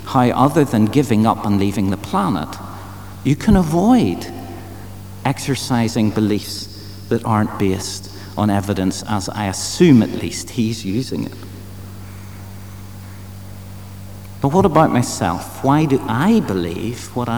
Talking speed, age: 125 wpm, 50-69